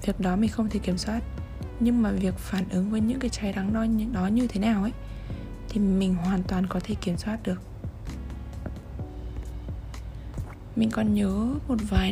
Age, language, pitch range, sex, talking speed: 20-39, Vietnamese, 175-215 Hz, female, 185 wpm